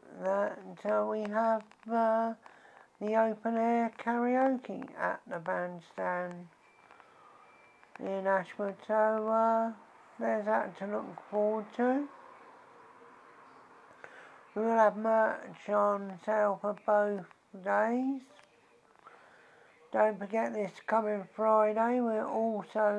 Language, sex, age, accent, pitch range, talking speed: English, male, 60-79, British, 200-225 Hz, 100 wpm